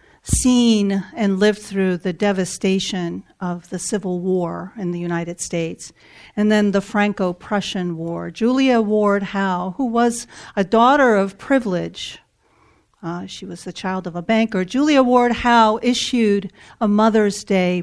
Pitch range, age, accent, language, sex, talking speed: 190-250 Hz, 50-69, American, English, female, 145 wpm